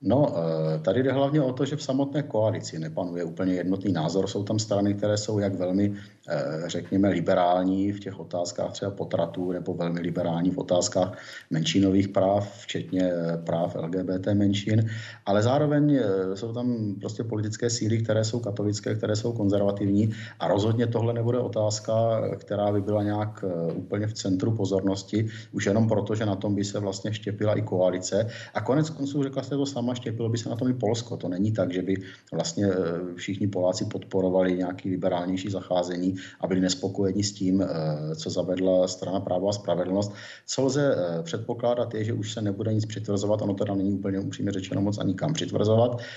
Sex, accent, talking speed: male, native, 175 wpm